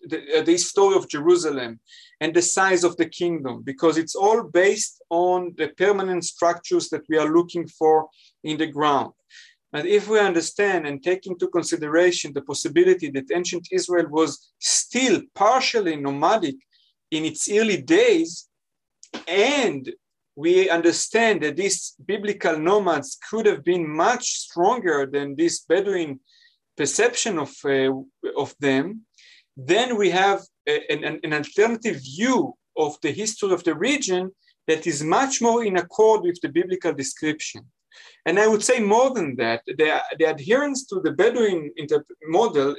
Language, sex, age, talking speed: English, male, 40-59, 150 wpm